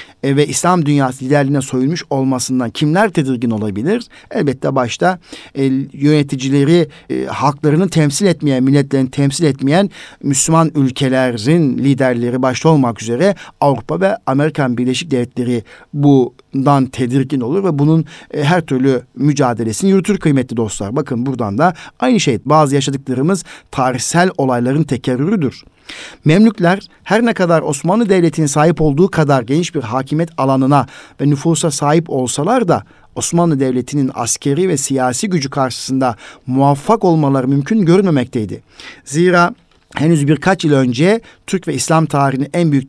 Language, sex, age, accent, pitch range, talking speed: Turkish, male, 60-79, native, 130-165 Hz, 125 wpm